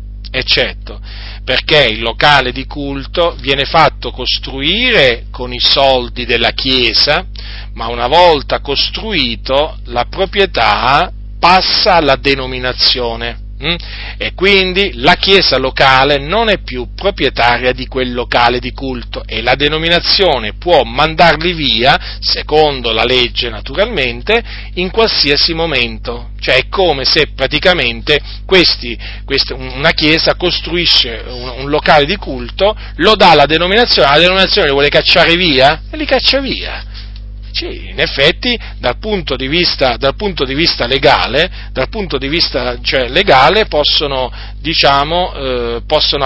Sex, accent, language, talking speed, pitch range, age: male, native, Italian, 115 wpm, 120-160 Hz, 40-59